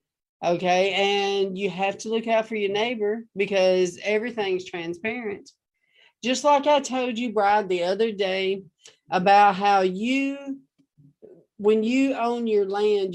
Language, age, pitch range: English, 50-69, 185-240 Hz